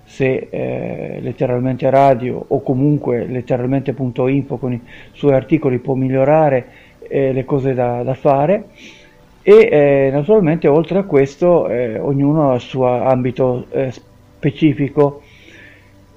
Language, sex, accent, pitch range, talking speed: Italian, male, native, 125-145 Hz, 130 wpm